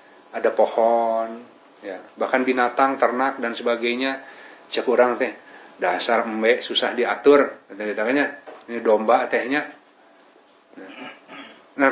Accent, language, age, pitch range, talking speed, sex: native, Indonesian, 30-49, 120-155 Hz, 95 wpm, male